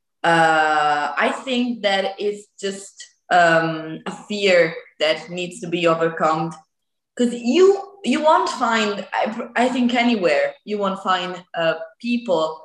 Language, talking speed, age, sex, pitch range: English, 135 wpm, 20-39, female, 165-220 Hz